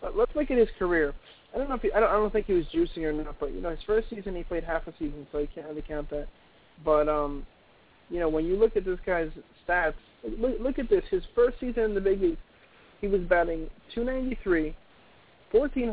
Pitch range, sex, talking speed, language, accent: 165-200 Hz, male, 240 wpm, English, American